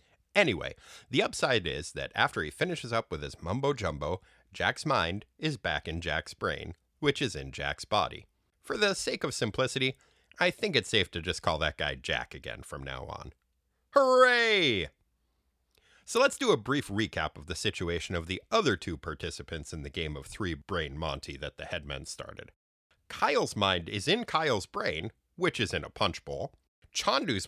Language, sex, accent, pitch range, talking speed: English, male, American, 75-110 Hz, 175 wpm